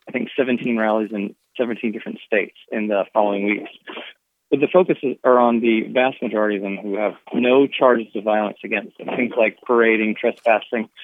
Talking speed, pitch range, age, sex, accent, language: 185 wpm, 110-130 Hz, 20-39, male, American, English